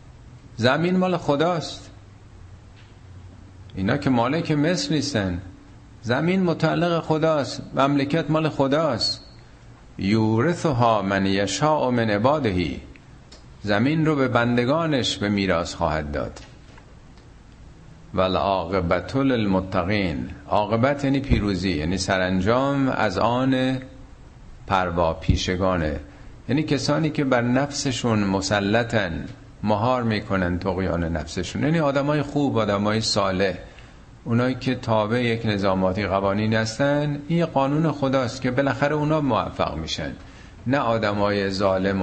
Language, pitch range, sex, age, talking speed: Persian, 95-135 Hz, male, 50-69, 100 wpm